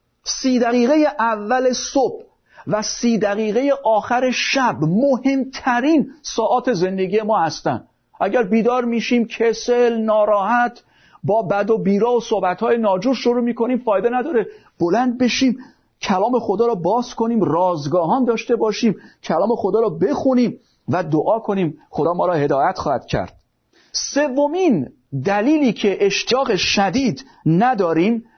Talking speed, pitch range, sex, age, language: 125 wpm, 195-255 Hz, male, 50-69, Persian